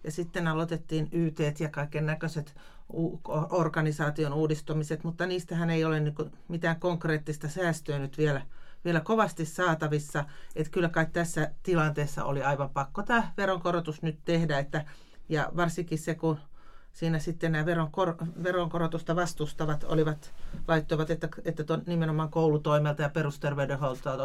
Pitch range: 145-170 Hz